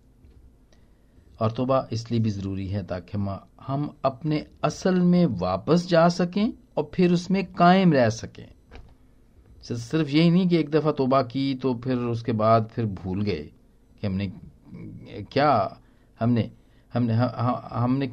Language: Hindi